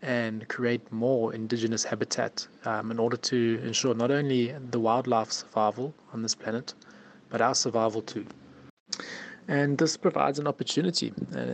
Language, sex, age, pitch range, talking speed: English, male, 20-39, 110-125 Hz, 145 wpm